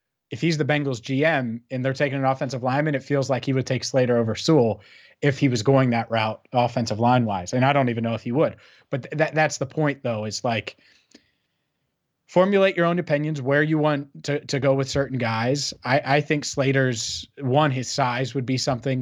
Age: 30-49